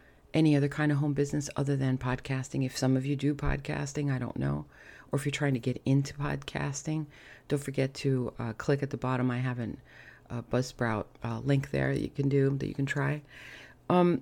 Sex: female